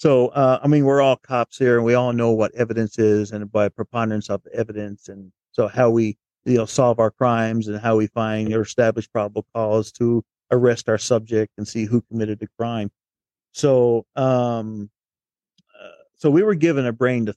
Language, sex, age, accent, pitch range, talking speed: English, male, 40-59, American, 105-125 Hz, 195 wpm